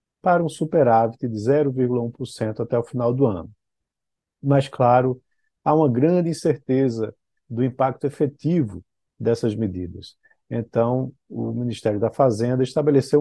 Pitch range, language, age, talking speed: 115-135 Hz, Portuguese, 50-69, 125 wpm